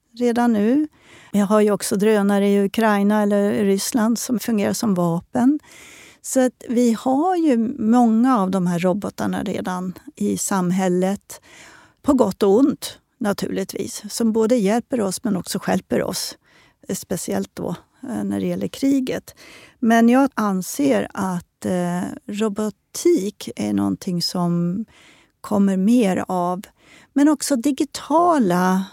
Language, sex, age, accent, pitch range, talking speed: Swedish, female, 40-59, native, 190-235 Hz, 130 wpm